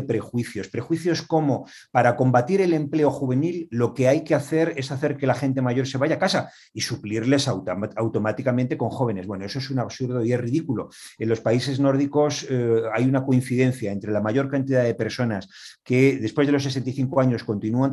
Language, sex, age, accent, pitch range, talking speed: Spanish, male, 40-59, Spanish, 115-140 Hz, 190 wpm